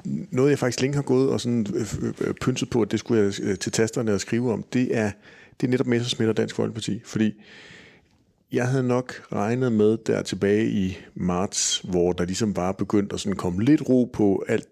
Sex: male